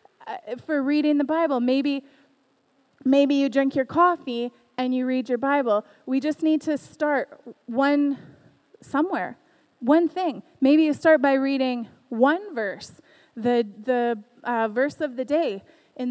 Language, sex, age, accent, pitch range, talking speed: English, female, 20-39, American, 245-300 Hz, 145 wpm